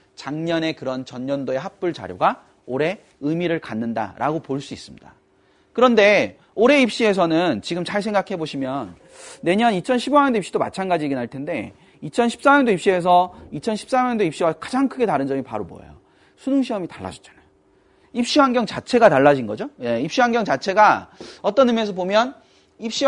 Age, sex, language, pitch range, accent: 30-49, male, Korean, 155-235 Hz, native